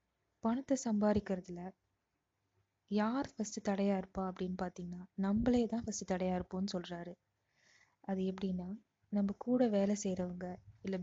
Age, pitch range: 20-39, 185-210 Hz